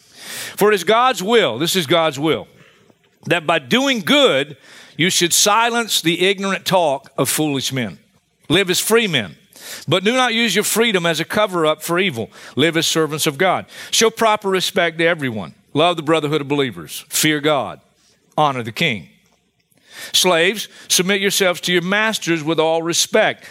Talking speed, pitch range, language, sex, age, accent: 170 wpm, 165-225 Hz, English, male, 50-69, American